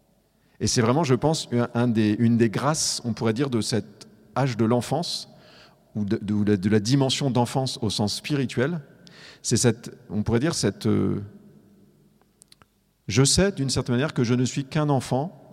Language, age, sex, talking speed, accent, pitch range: French, 40-59, male, 170 wpm, French, 110-140 Hz